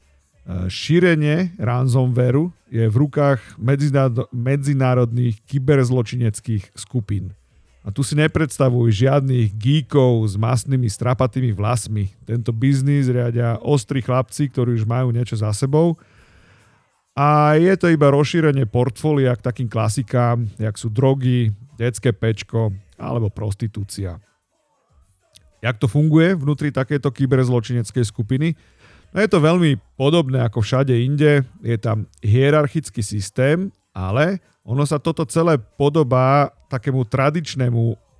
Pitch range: 115-145 Hz